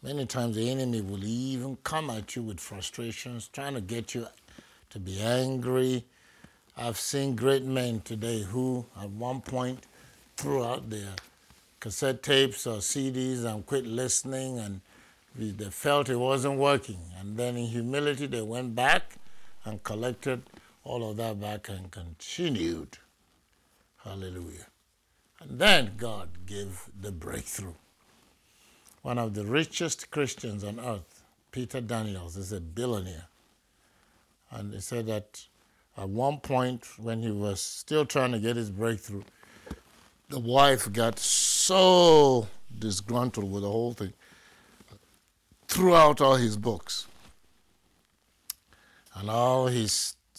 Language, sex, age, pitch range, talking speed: English, male, 60-79, 100-130 Hz, 130 wpm